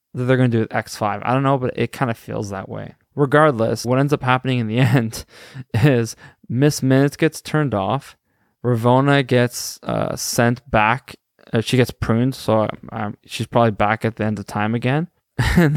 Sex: male